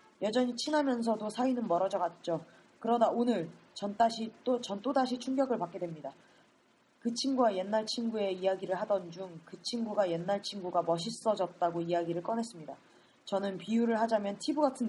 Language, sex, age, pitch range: Korean, female, 20-39, 185-250 Hz